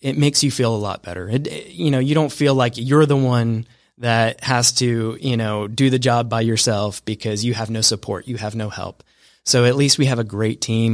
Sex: male